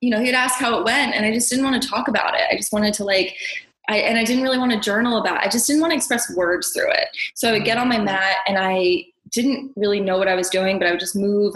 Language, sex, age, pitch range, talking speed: English, female, 20-39, 185-215 Hz, 315 wpm